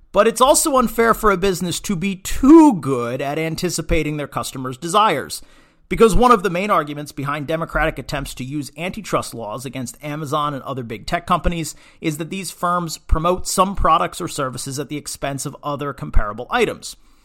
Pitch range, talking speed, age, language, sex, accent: 135-175 Hz, 180 wpm, 40-59, English, male, American